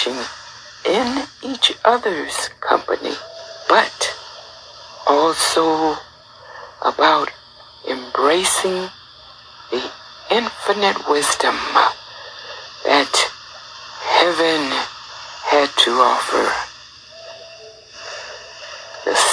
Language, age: English, 60-79